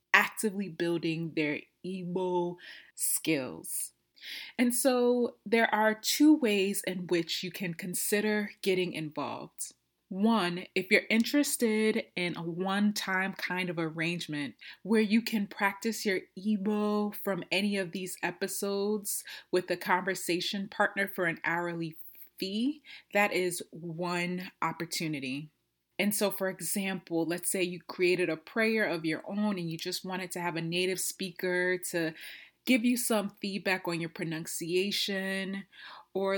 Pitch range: 170-200 Hz